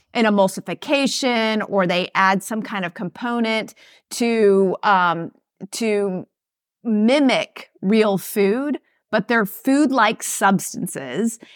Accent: American